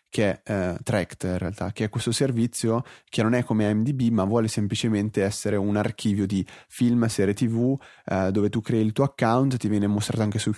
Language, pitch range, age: English, 105-125 Hz, 30-49